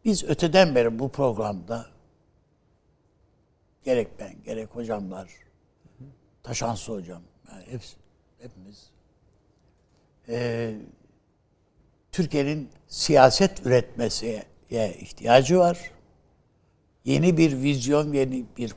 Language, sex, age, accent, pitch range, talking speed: Turkish, male, 60-79, native, 110-150 Hz, 75 wpm